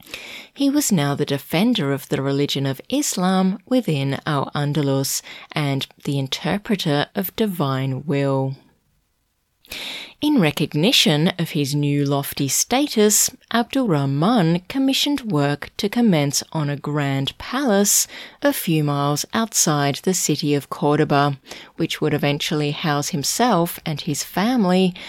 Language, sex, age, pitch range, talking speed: English, female, 30-49, 145-190 Hz, 125 wpm